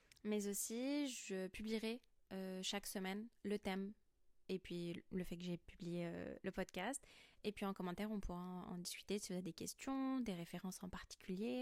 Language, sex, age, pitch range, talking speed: French, female, 20-39, 185-210 Hz, 190 wpm